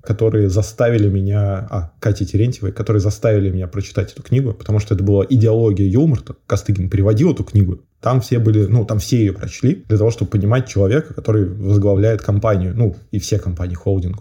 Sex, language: male, Russian